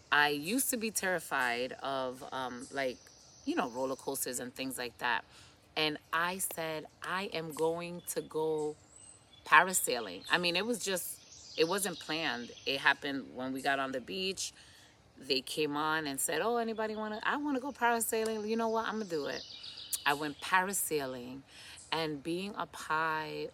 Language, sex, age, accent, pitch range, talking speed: English, female, 30-49, American, 145-180 Hz, 170 wpm